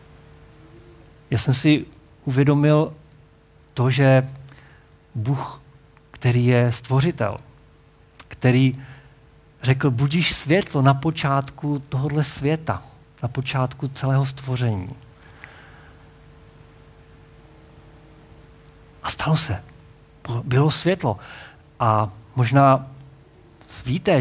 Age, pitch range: 50-69, 115-145 Hz